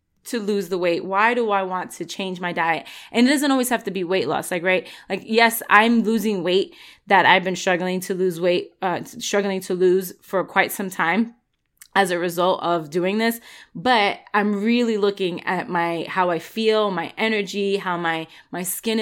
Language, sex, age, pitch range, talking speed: English, female, 20-39, 180-215 Hz, 200 wpm